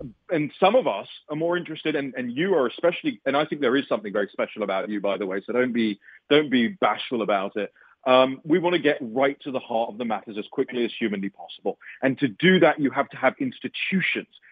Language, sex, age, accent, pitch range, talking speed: English, male, 30-49, British, 130-175 Hz, 245 wpm